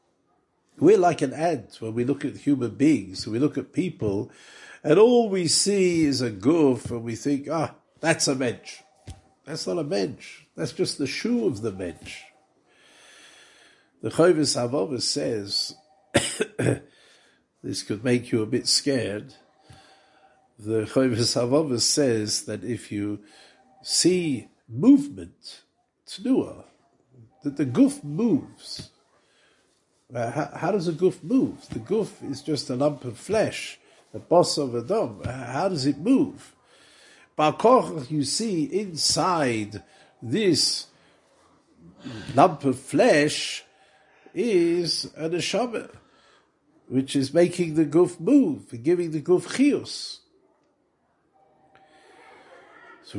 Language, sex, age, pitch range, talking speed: English, male, 60-79, 125-180 Hz, 120 wpm